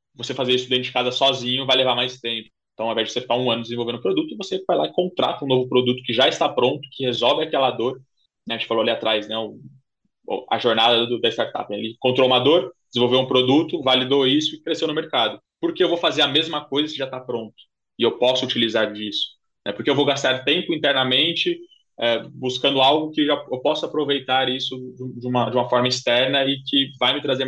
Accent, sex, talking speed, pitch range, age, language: Brazilian, male, 235 wpm, 120-140 Hz, 20-39, Portuguese